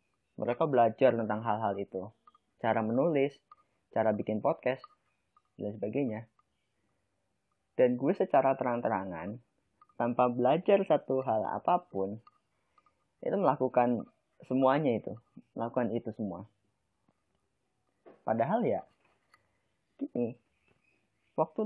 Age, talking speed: 20-39, 90 wpm